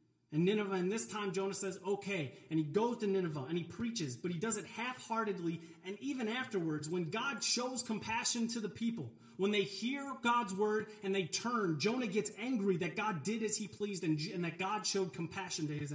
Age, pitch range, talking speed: 30-49, 150-215 Hz, 205 wpm